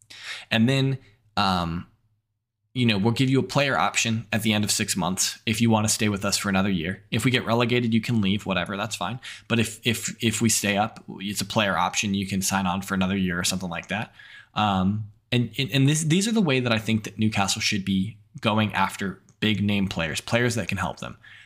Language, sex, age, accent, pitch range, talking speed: English, male, 10-29, American, 100-125 Hz, 235 wpm